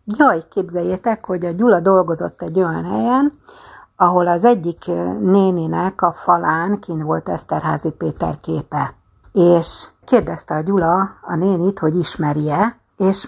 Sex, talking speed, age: female, 130 wpm, 60-79